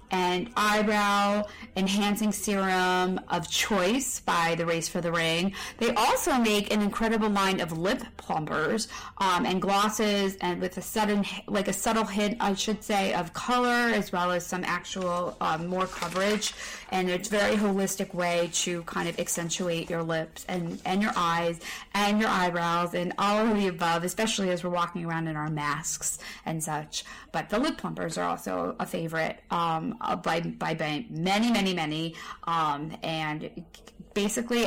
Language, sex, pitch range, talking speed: English, female, 175-215 Hz, 170 wpm